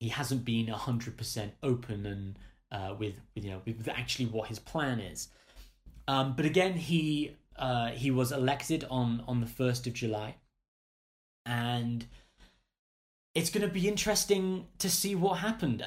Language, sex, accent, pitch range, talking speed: English, male, British, 110-135 Hz, 155 wpm